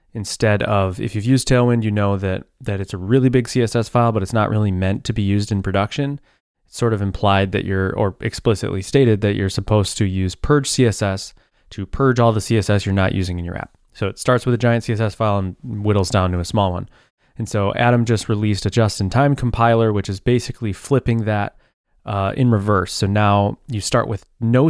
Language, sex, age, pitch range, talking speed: English, male, 20-39, 100-120 Hz, 220 wpm